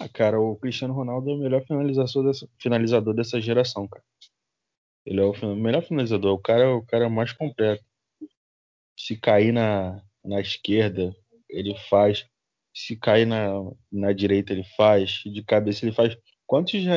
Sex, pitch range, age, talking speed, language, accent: male, 100-120 Hz, 20-39, 160 wpm, Portuguese, Brazilian